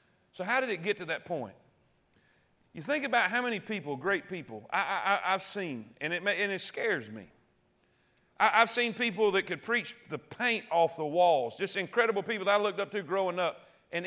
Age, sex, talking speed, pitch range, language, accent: 40-59, male, 215 wpm, 170-230 Hz, English, American